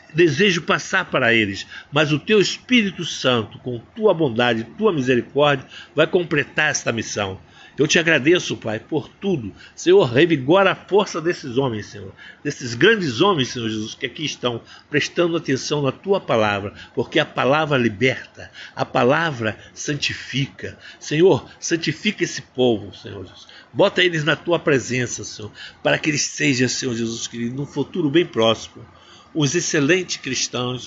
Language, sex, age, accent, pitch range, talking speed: Portuguese, male, 60-79, Brazilian, 115-170 Hz, 150 wpm